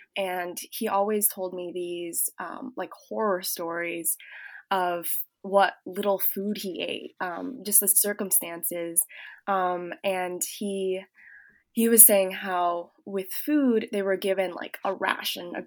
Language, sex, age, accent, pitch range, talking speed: English, female, 20-39, American, 180-205 Hz, 135 wpm